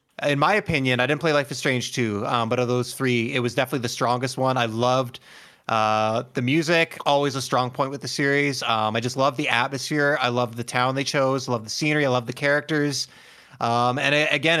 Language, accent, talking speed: English, American, 230 wpm